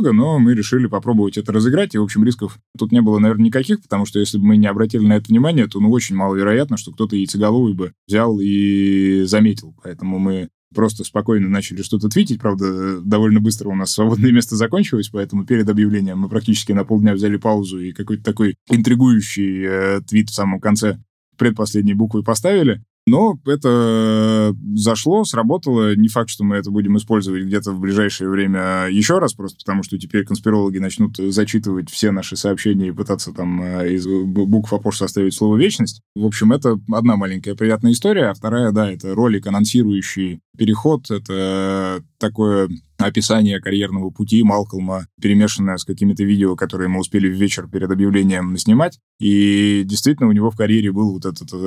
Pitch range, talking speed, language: 95-110 Hz, 175 wpm, Russian